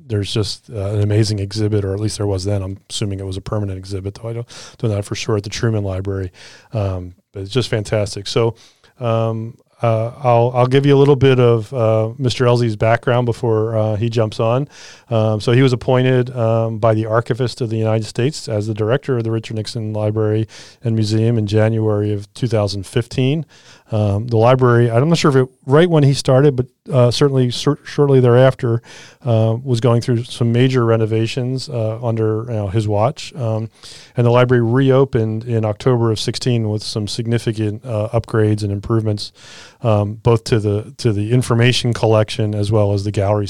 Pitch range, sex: 110-125 Hz, male